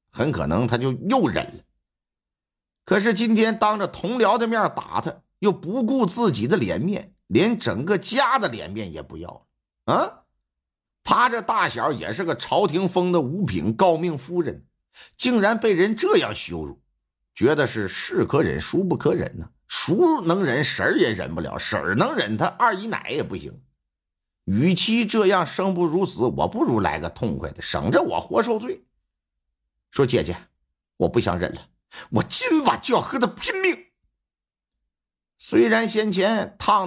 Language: Chinese